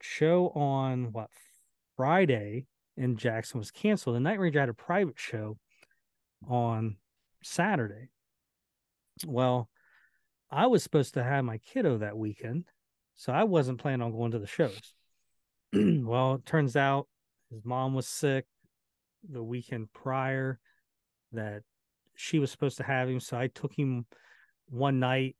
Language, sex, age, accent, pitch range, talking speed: English, male, 40-59, American, 115-140 Hz, 140 wpm